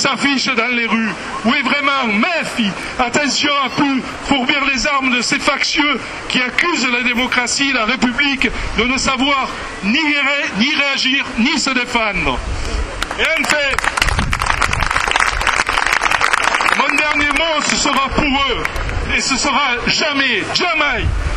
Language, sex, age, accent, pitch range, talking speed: French, male, 60-79, French, 245-280 Hz, 135 wpm